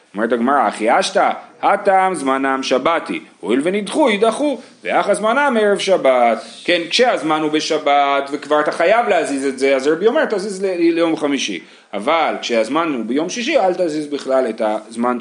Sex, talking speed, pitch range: male, 180 wpm, 135-220 Hz